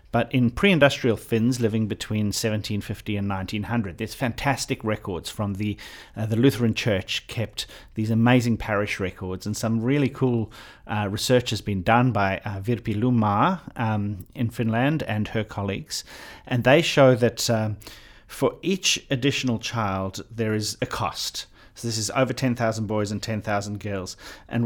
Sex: male